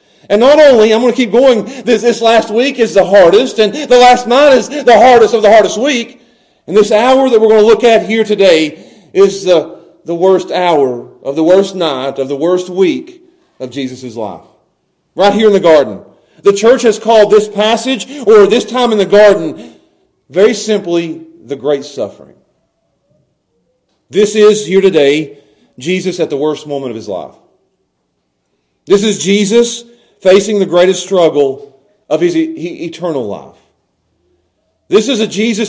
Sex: male